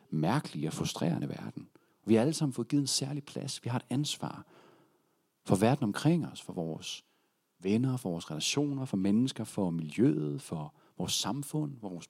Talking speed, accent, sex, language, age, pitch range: 175 wpm, native, male, Danish, 40-59, 110-155 Hz